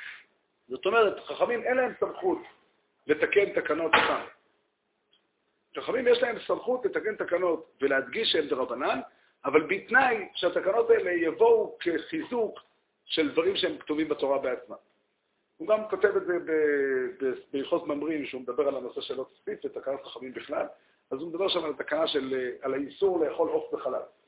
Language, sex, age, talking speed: Hebrew, male, 50-69, 145 wpm